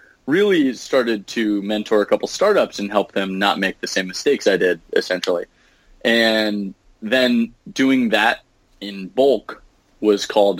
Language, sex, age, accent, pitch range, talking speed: English, male, 20-39, American, 95-115 Hz, 145 wpm